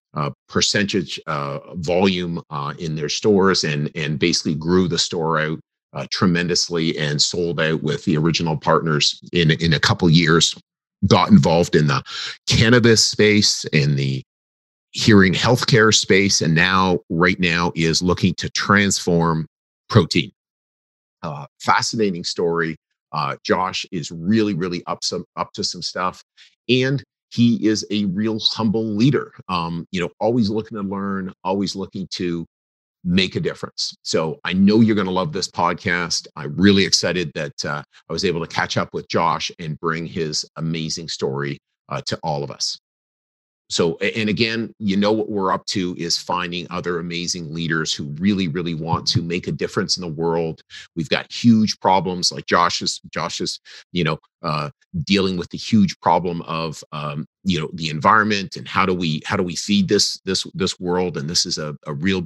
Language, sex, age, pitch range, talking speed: English, male, 40-59, 80-105 Hz, 175 wpm